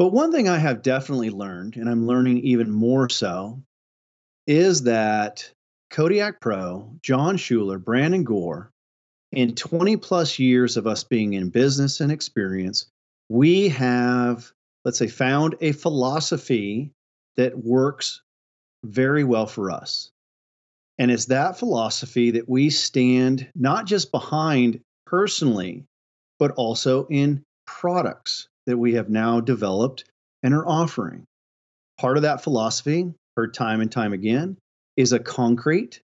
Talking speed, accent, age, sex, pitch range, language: 130 wpm, American, 40-59, male, 110-145 Hz, English